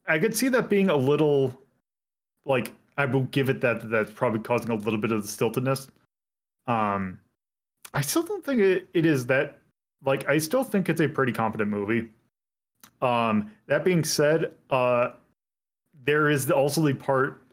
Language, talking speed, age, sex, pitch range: English, 175 wpm, 30-49, male, 120-185 Hz